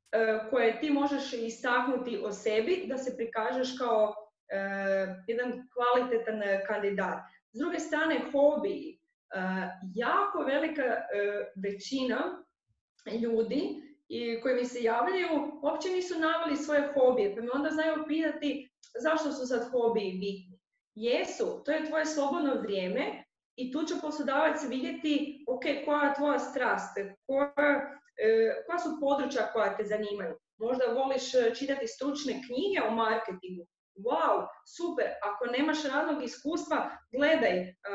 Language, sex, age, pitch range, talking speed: Croatian, female, 20-39, 225-300 Hz, 130 wpm